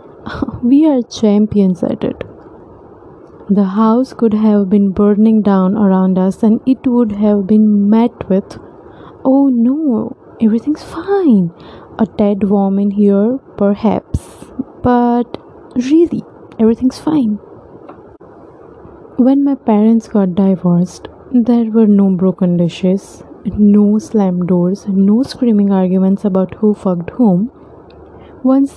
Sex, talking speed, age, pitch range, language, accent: female, 115 wpm, 20-39, 200-245 Hz, English, Indian